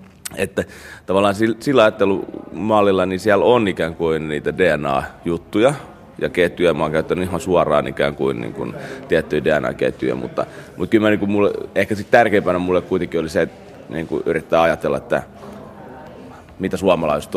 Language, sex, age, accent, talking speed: Finnish, male, 30-49, native, 150 wpm